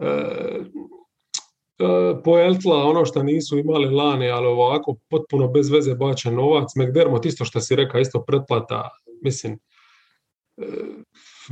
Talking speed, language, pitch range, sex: 130 wpm, English, 130-170 Hz, male